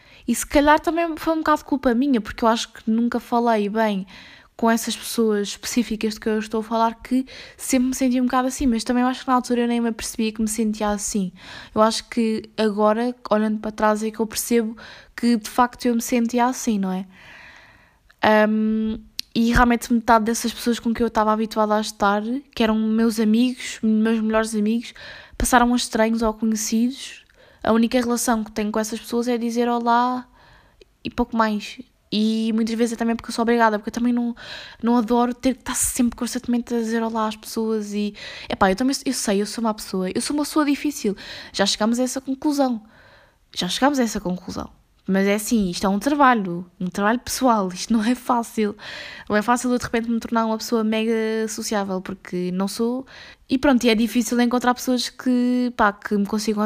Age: 10-29